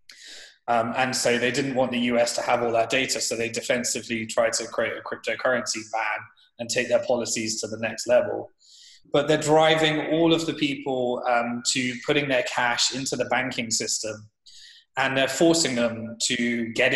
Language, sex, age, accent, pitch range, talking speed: English, male, 20-39, British, 115-135 Hz, 185 wpm